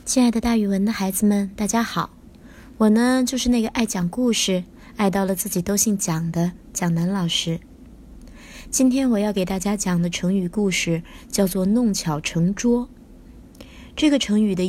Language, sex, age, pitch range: Chinese, female, 20-39, 195-245 Hz